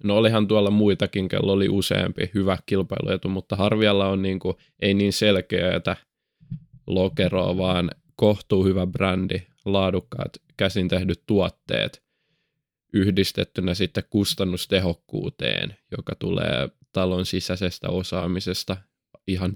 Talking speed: 105 wpm